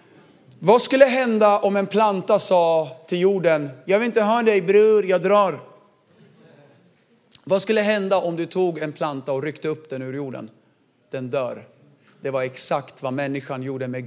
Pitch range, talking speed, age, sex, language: 140-190 Hz, 170 wpm, 40-59, male, Swedish